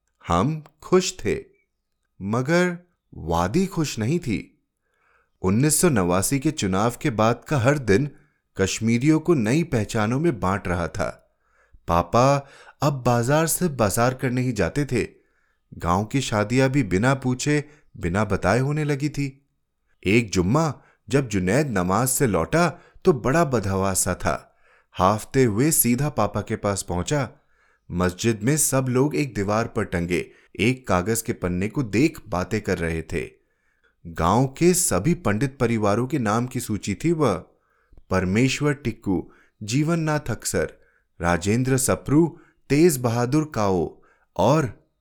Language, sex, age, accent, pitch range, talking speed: Hindi, male, 30-49, native, 95-150 Hz, 135 wpm